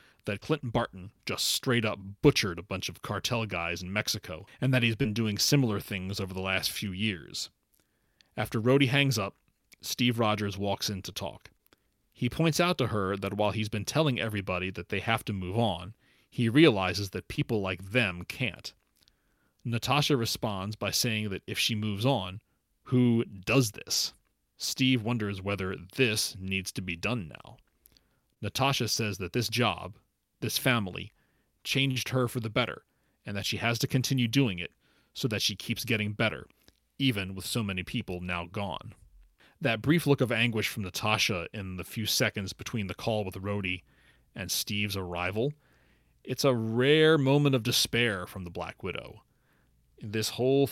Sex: male